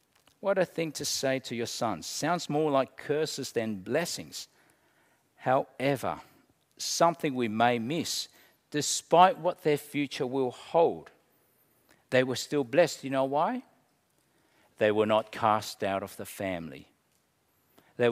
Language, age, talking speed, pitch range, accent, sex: English, 50-69, 135 wpm, 110-150 Hz, Australian, male